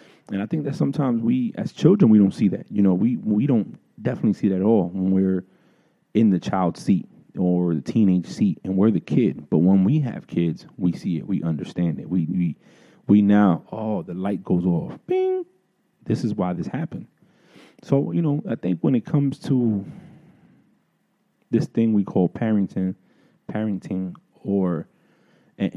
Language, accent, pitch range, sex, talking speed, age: English, American, 95-120 Hz, male, 185 wpm, 30-49